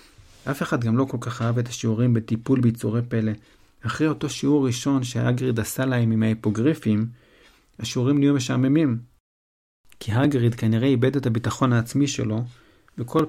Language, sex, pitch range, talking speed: Hebrew, male, 115-135 Hz, 150 wpm